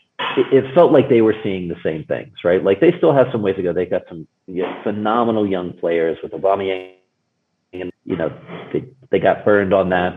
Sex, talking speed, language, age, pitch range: male, 225 wpm, English, 40-59, 90-140 Hz